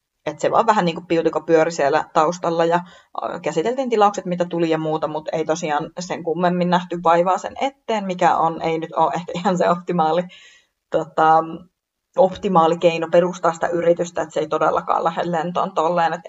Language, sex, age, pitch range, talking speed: Finnish, female, 30-49, 170-205 Hz, 175 wpm